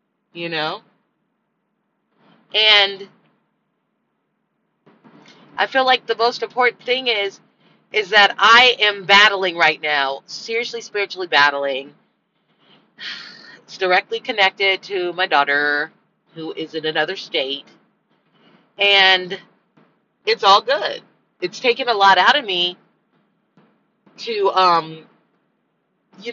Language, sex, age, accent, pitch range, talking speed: English, female, 40-59, American, 185-230 Hz, 105 wpm